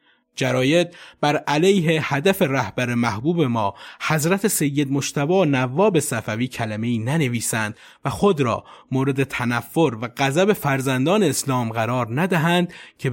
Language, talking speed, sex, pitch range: Persian, 125 wpm, male, 120-175 Hz